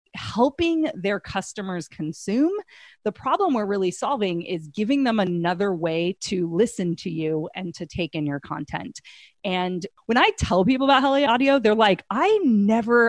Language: English